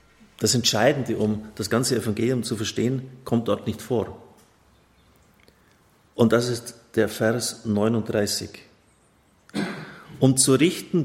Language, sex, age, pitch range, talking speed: German, male, 50-69, 100-120 Hz, 115 wpm